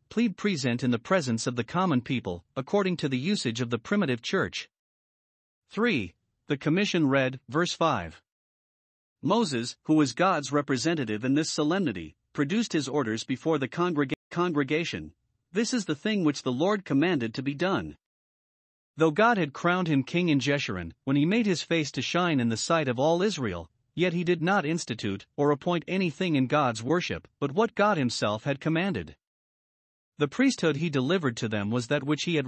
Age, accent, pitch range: 50-69, American, 125-175 Hz